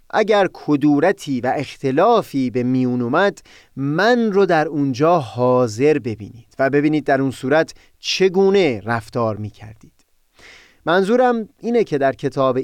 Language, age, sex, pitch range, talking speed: Persian, 30-49, male, 125-180 Hz, 130 wpm